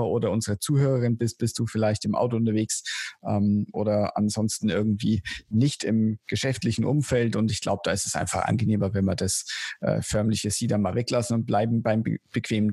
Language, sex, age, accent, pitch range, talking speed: German, male, 50-69, German, 115-145 Hz, 185 wpm